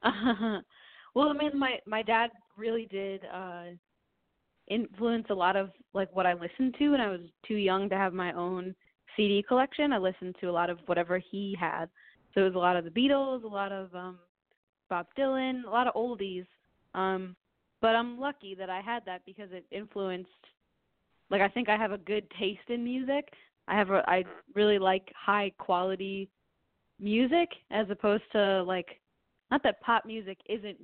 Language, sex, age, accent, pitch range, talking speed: English, female, 20-39, American, 185-230 Hz, 180 wpm